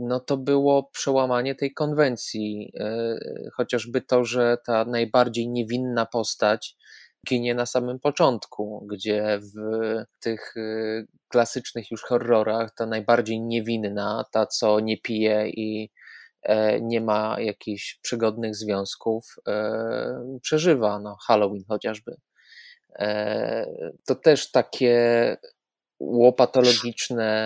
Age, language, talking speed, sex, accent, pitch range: 20-39, Polish, 95 wpm, male, native, 110-120 Hz